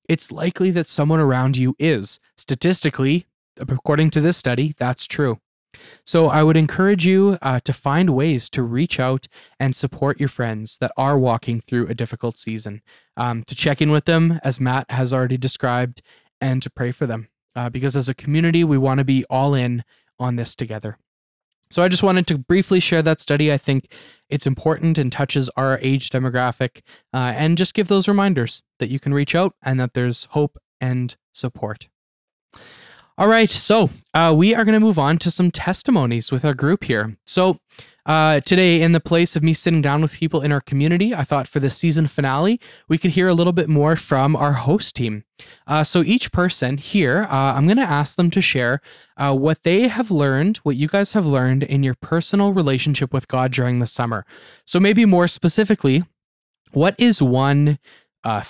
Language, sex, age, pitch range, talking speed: English, male, 20-39, 130-170 Hz, 195 wpm